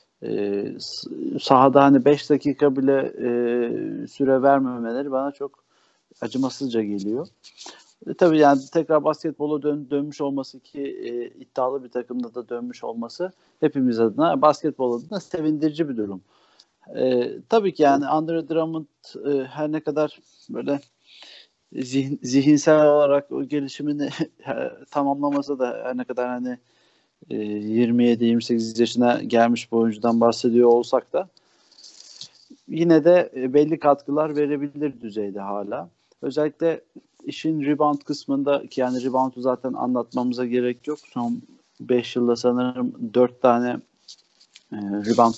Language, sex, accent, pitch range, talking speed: Turkish, male, native, 125-150 Hz, 120 wpm